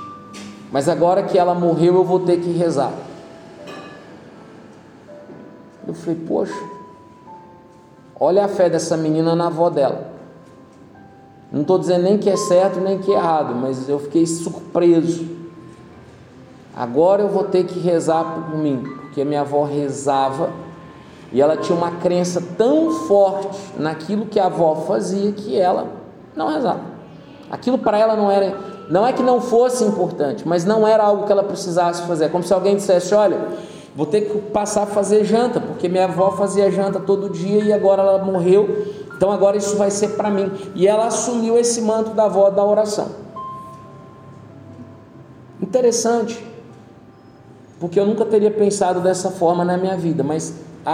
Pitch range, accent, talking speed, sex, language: 165-205 Hz, Brazilian, 160 wpm, male, Portuguese